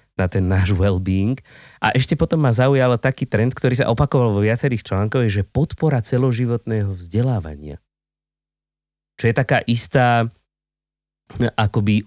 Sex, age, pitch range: male, 30-49, 95-120 Hz